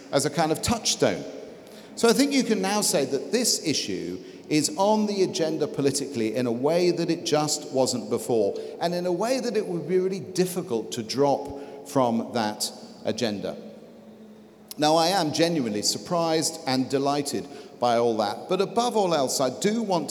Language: English